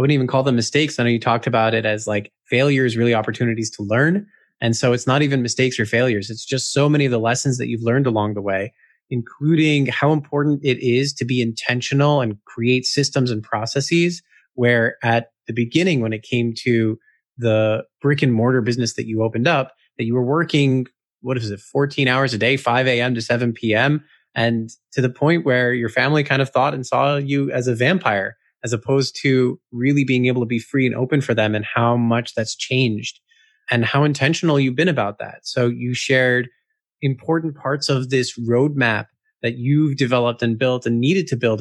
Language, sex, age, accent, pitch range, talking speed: English, male, 20-39, American, 115-140 Hz, 210 wpm